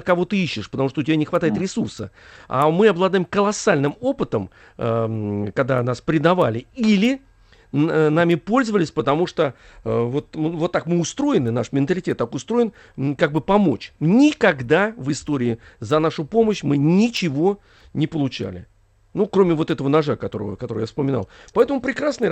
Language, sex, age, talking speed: Russian, male, 40-59, 150 wpm